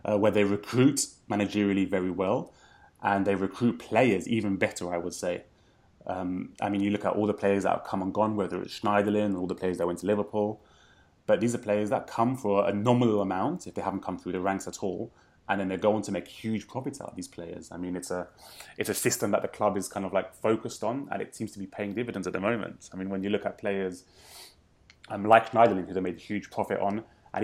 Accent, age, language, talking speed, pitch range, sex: British, 20-39, English, 250 wpm, 95-105 Hz, male